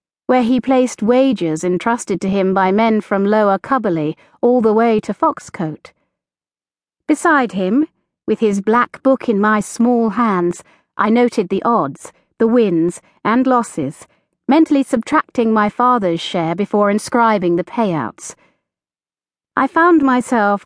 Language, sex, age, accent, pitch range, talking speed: English, female, 40-59, British, 180-255 Hz, 135 wpm